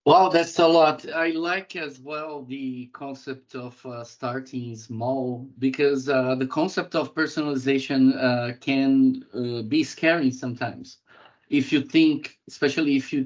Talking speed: 145 wpm